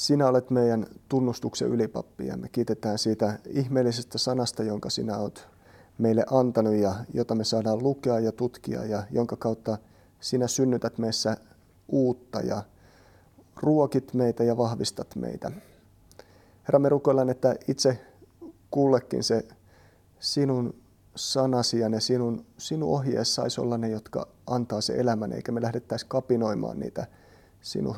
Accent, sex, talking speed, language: native, male, 130 wpm, Finnish